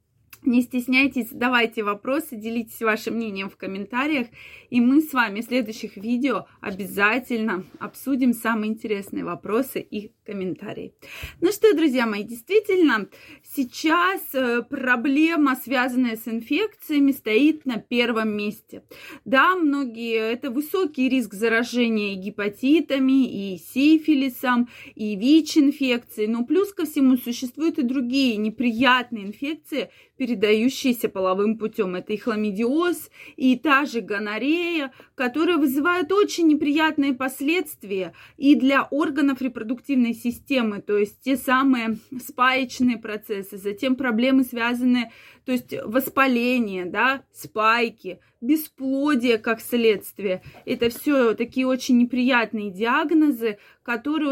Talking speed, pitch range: 110 wpm, 225-280 Hz